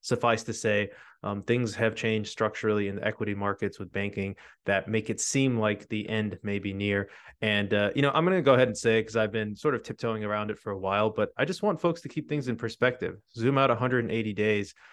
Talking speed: 240 wpm